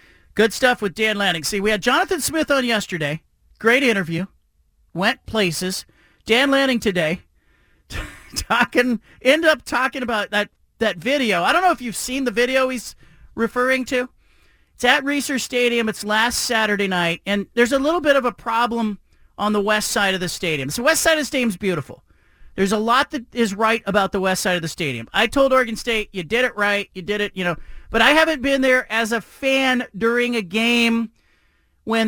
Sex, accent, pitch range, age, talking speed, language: male, American, 195-245 Hz, 40-59, 200 wpm, English